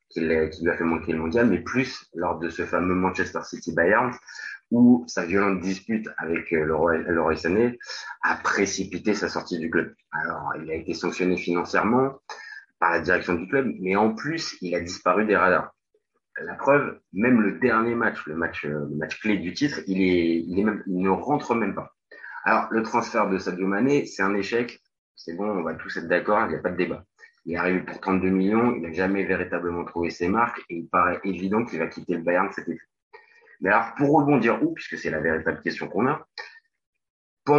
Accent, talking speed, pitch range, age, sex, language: French, 210 wpm, 90-115 Hz, 30-49, male, French